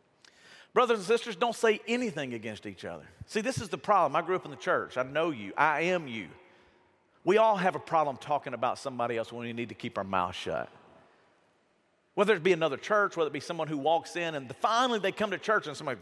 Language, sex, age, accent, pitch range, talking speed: English, male, 40-59, American, 140-205 Hz, 235 wpm